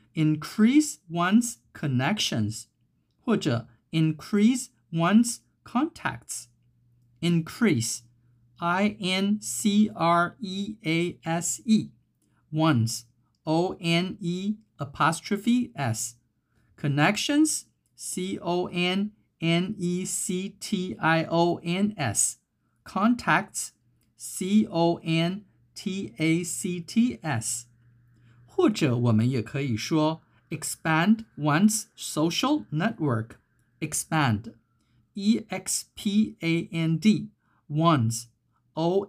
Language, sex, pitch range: Chinese, male, 125-200 Hz